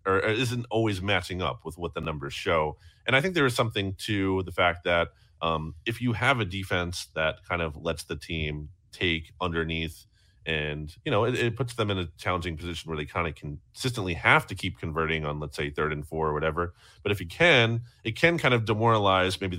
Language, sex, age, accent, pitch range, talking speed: English, male, 30-49, American, 85-110 Hz, 220 wpm